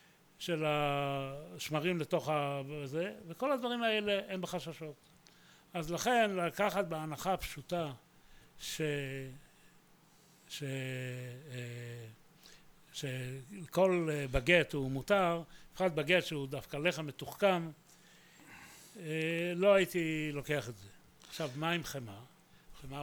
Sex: male